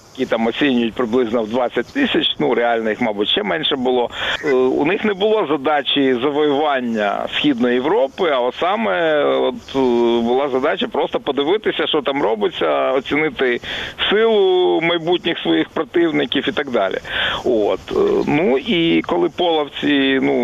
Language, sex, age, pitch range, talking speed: Ukrainian, male, 50-69, 120-180 Hz, 130 wpm